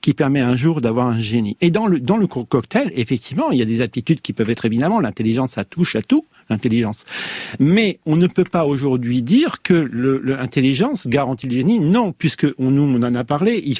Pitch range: 125-175 Hz